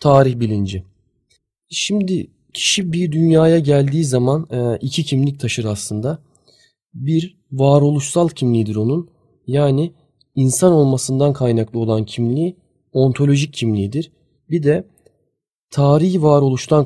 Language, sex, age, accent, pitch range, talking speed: Turkish, male, 30-49, native, 125-160 Hz, 100 wpm